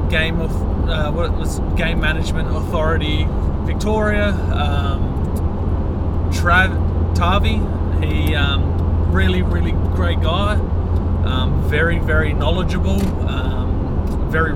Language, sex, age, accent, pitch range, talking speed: English, male, 20-39, Australian, 80-90 Hz, 105 wpm